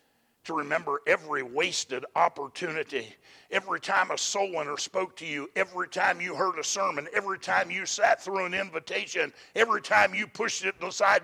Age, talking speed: 50-69, 170 wpm